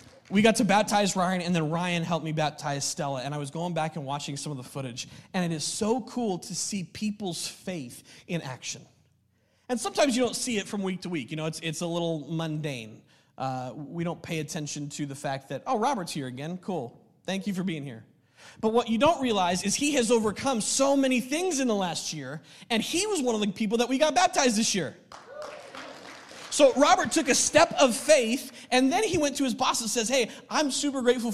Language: English